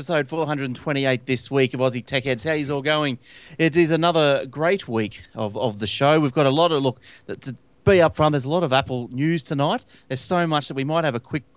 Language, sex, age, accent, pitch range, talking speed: English, male, 30-49, Australian, 120-155 Hz, 260 wpm